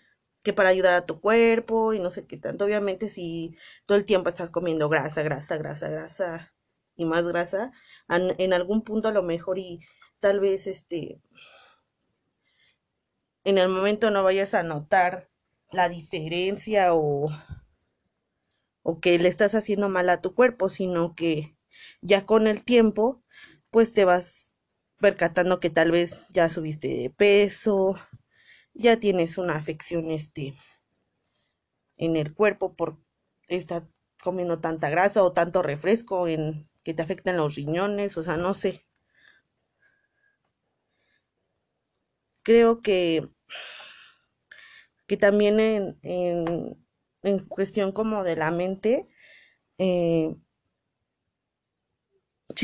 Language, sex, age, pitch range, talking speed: Spanish, female, 20-39, 165-205 Hz, 125 wpm